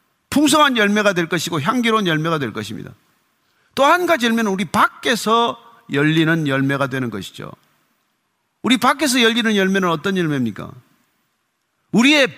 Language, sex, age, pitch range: Korean, male, 50-69, 155-250 Hz